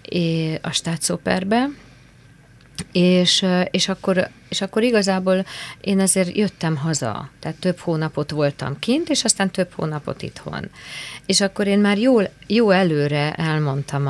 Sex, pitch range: female, 145-200 Hz